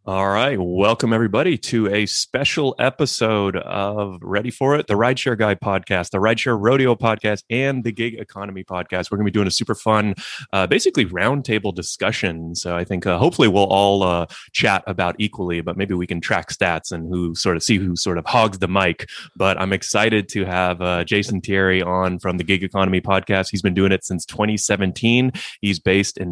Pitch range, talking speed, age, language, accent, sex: 90-105 Hz, 200 wpm, 30-49, English, American, male